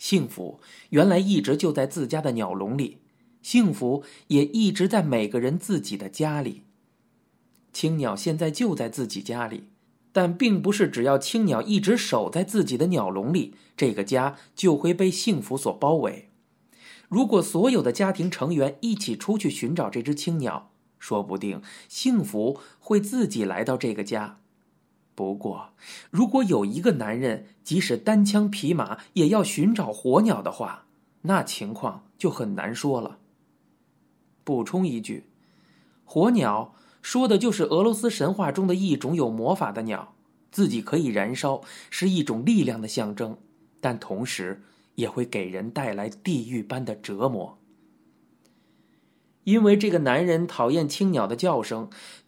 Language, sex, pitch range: Chinese, male, 125-200 Hz